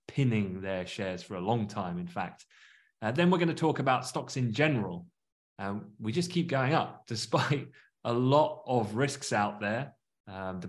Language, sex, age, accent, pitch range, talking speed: English, male, 30-49, British, 100-130 Hz, 190 wpm